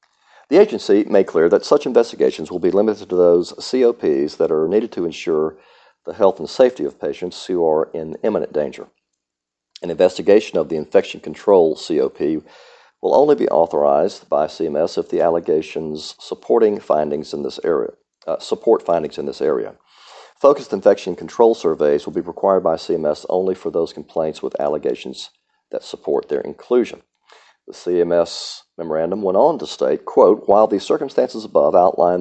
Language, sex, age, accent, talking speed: English, male, 50-69, American, 165 wpm